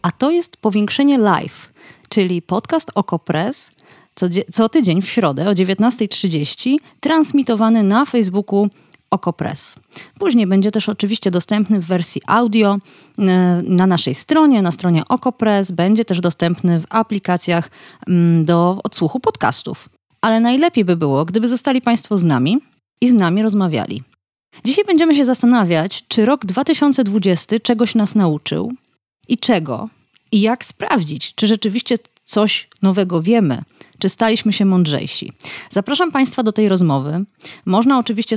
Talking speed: 130 wpm